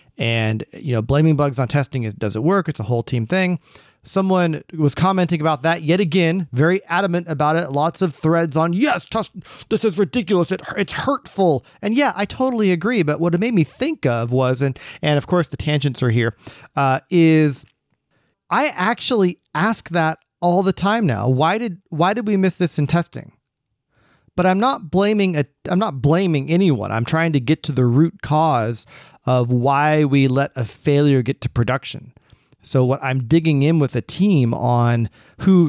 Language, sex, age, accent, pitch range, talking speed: English, male, 30-49, American, 130-180 Hz, 195 wpm